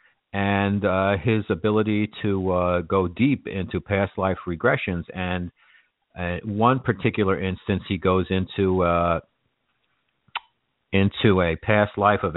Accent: American